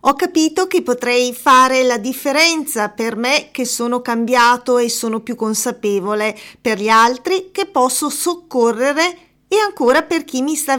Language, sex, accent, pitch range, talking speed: English, female, Italian, 230-290 Hz, 155 wpm